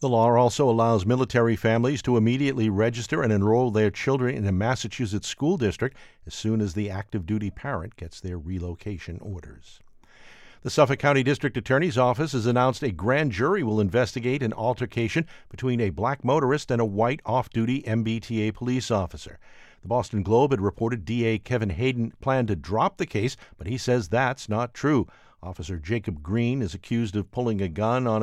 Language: English